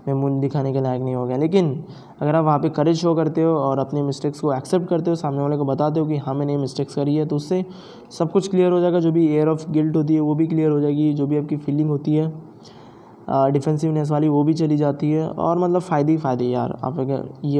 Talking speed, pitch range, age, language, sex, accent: 260 wpm, 145-160 Hz, 20-39, Hindi, male, native